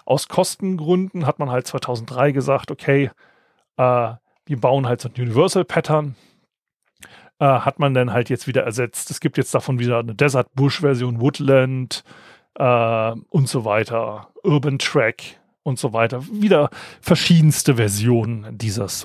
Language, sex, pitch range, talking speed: German, male, 125-165 Hz, 135 wpm